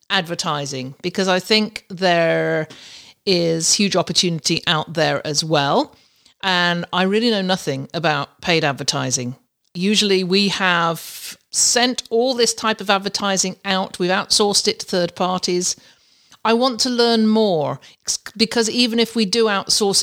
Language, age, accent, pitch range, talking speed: English, 50-69, British, 170-215 Hz, 140 wpm